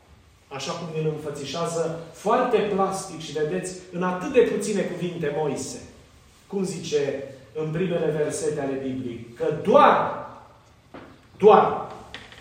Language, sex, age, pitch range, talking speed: Romanian, male, 30-49, 130-190 Hz, 115 wpm